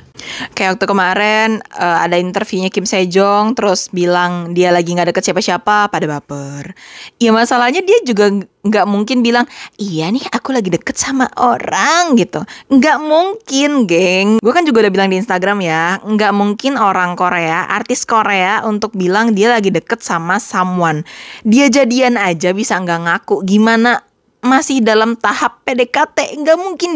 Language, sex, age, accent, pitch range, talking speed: Indonesian, female, 20-39, native, 180-240 Hz, 155 wpm